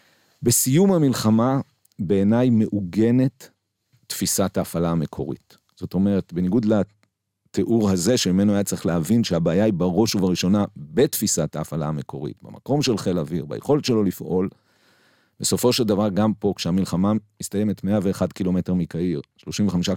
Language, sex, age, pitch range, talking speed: Hebrew, male, 50-69, 95-115 Hz, 125 wpm